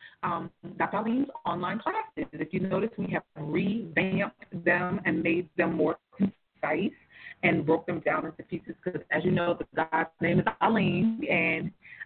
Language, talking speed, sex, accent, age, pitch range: English, 165 wpm, female, American, 30-49, 165-195 Hz